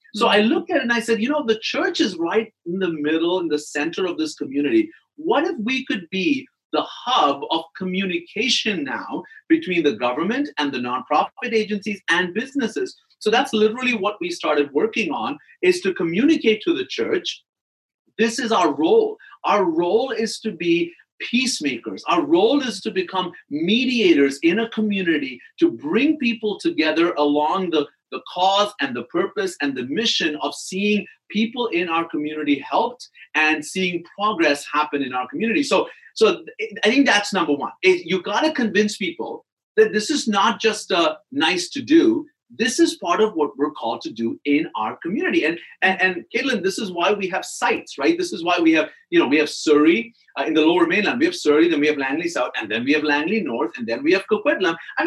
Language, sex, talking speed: English, male, 200 wpm